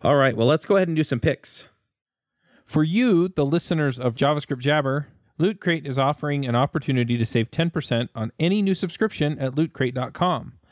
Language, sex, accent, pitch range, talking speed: English, male, American, 125-155 Hz, 180 wpm